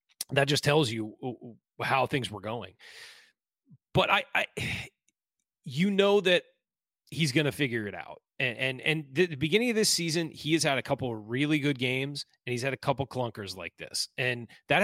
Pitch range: 115-150 Hz